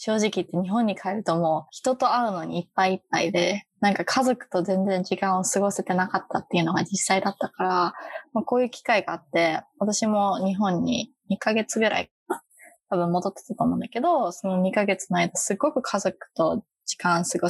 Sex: female